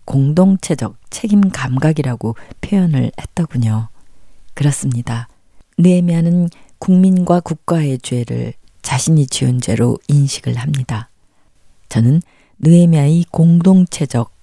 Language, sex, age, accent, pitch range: Korean, female, 40-59, native, 120-165 Hz